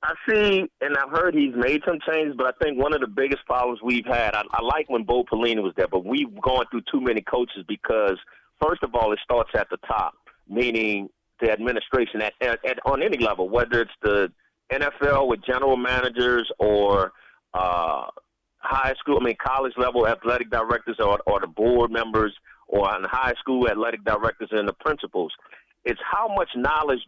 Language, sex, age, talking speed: English, male, 30-49, 195 wpm